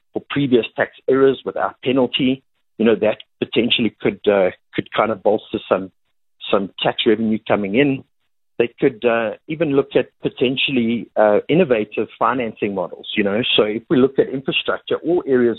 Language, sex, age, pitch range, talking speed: English, male, 50-69, 110-135 Hz, 165 wpm